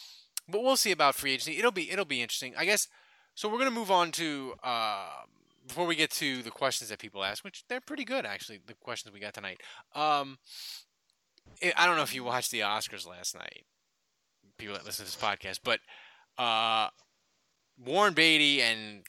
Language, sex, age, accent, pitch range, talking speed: English, male, 20-39, American, 115-160 Hz, 200 wpm